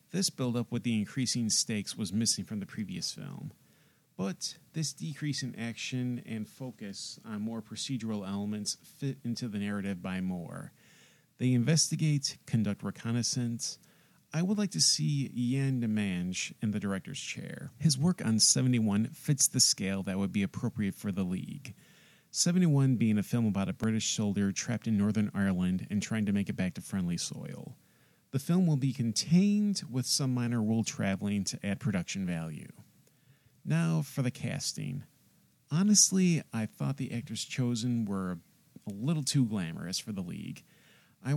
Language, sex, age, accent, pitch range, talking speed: English, male, 40-59, American, 105-140 Hz, 160 wpm